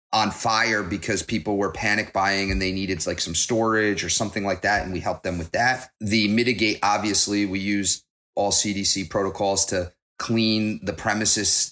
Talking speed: 180 wpm